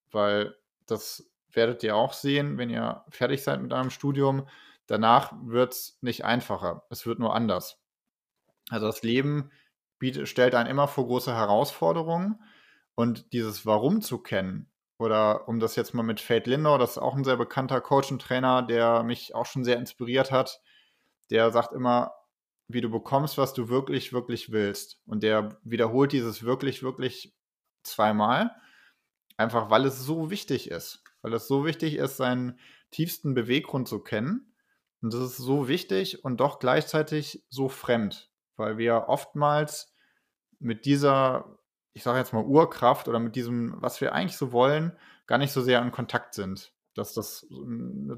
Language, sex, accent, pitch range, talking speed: German, male, German, 115-140 Hz, 165 wpm